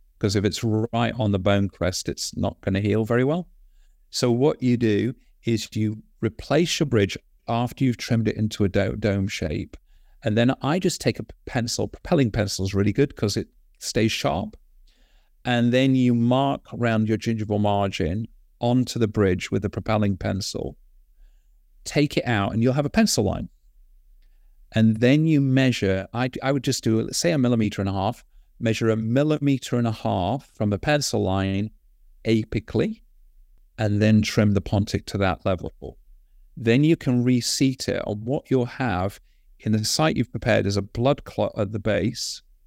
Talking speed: 180 wpm